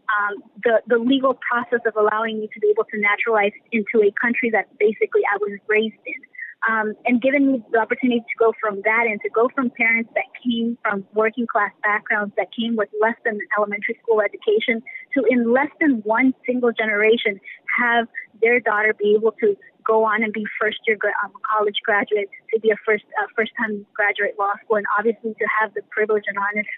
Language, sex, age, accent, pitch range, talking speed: English, female, 20-39, American, 215-275 Hz, 200 wpm